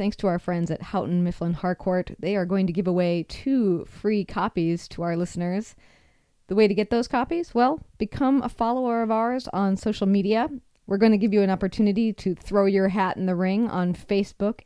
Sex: female